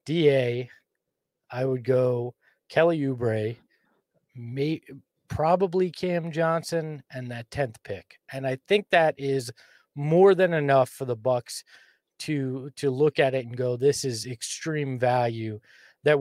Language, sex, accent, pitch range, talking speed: English, male, American, 130-160 Hz, 135 wpm